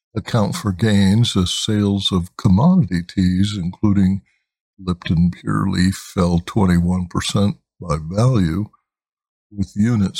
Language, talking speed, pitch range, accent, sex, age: English, 105 wpm, 90-110 Hz, American, male, 60-79